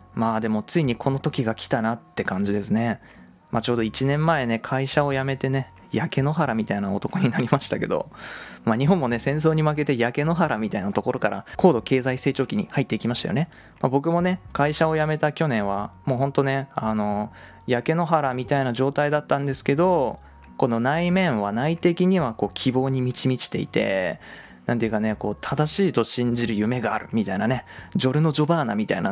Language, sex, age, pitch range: Japanese, male, 20-39, 115-150 Hz